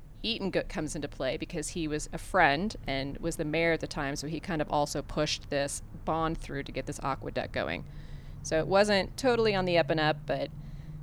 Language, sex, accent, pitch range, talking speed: English, female, American, 140-165 Hz, 220 wpm